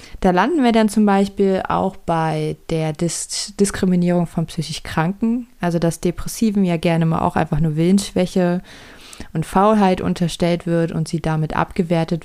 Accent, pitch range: German, 160-190 Hz